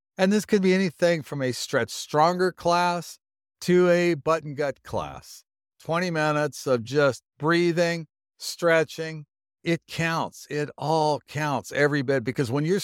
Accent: American